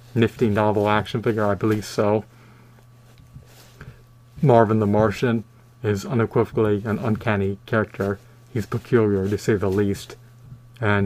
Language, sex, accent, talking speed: English, male, American, 120 wpm